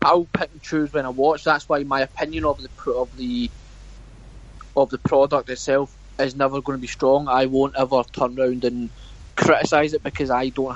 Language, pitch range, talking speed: English, 125-145 Hz, 200 wpm